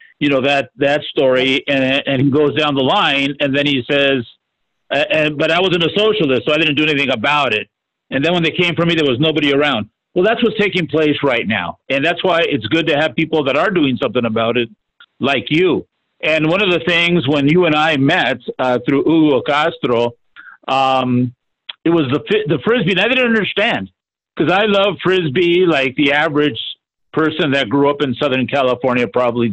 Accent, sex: American, male